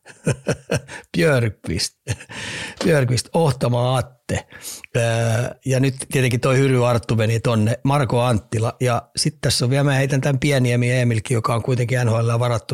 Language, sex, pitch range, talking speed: Finnish, male, 120-135 Hz, 130 wpm